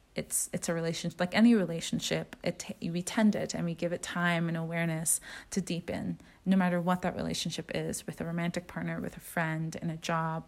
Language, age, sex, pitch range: English, 30-49, female, 165-185 Hz